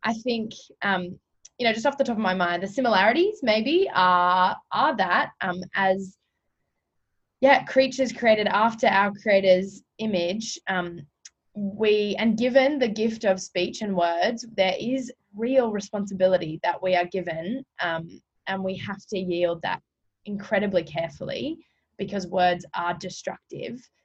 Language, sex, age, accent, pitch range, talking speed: English, female, 20-39, Australian, 180-220 Hz, 145 wpm